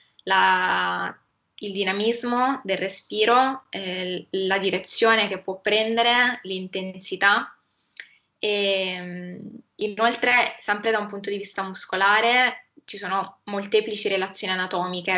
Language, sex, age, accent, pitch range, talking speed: Italian, female, 10-29, native, 185-210 Hz, 105 wpm